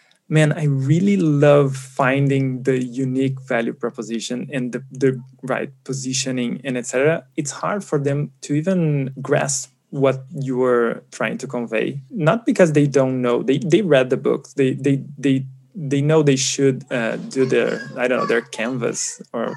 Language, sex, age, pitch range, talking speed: English, male, 20-39, 130-145 Hz, 170 wpm